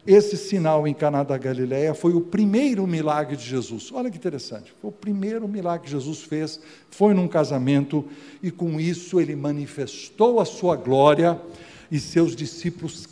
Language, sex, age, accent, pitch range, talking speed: Portuguese, male, 60-79, Brazilian, 140-180 Hz, 160 wpm